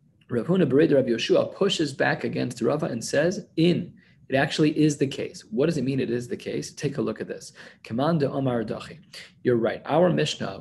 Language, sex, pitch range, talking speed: English, male, 120-165 Hz, 200 wpm